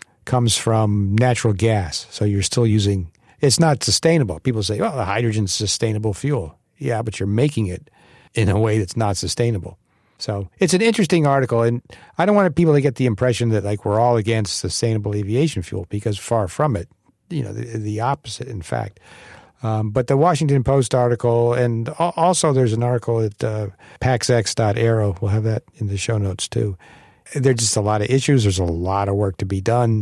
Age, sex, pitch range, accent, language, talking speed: 50-69, male, 105-130 Hz, American, English, 195 wpm